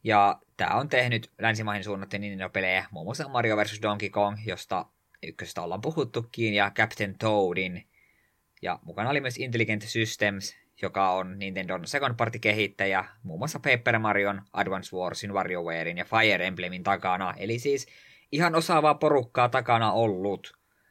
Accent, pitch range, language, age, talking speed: native, 95-115 Hz, Finnish, 20-39, 140 wpm